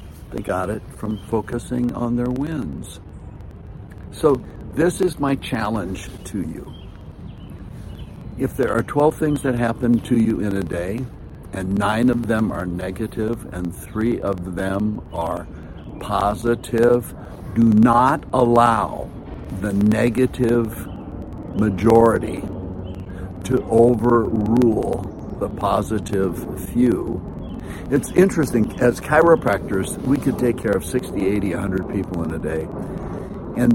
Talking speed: 120 wpm